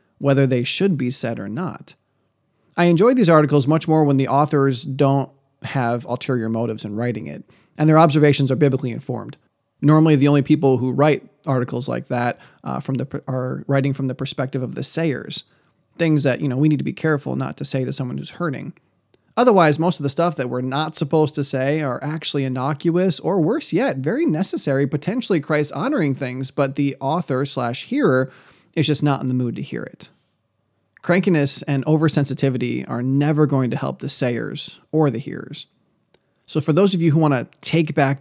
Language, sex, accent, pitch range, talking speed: English, male, American, 130-155 Hz, 190 wpm